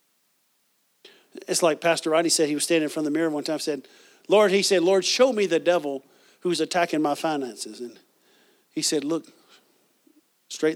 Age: 50-69